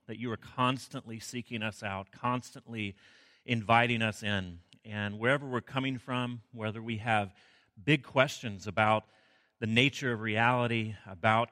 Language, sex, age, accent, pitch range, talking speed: English, male, 40-59, American, 105-125 Hz, 140 wpm